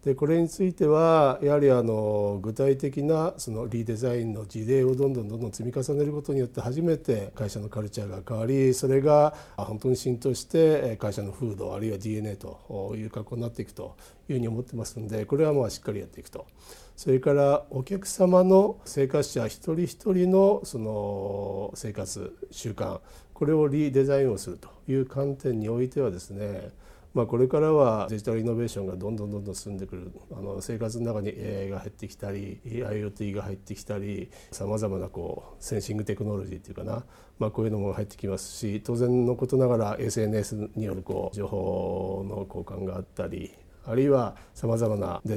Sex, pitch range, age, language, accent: male, 100-135 Hz, 50-69, Japanese, native